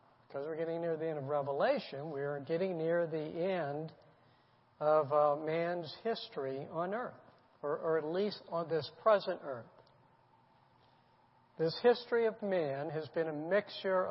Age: 60-79